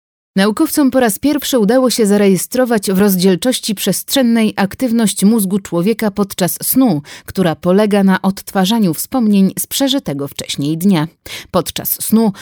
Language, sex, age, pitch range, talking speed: Polish, female, 30-49, 175-225 Hz, 125 wpm